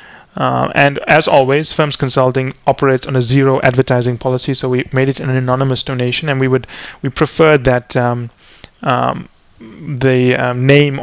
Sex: male